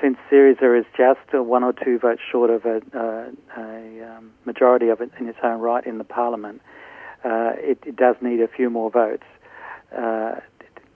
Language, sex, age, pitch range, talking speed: English, male, 50-69, 115-125 Hz, 185 wpm